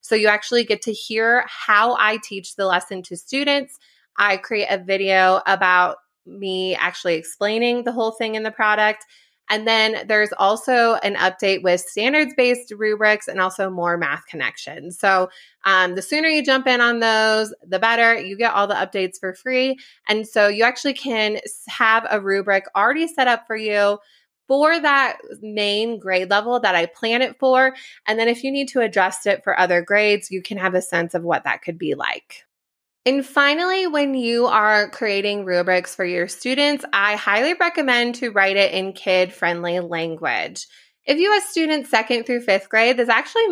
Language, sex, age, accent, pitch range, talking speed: English, female, 20-39, American, 190-245 Hz, 185 wpm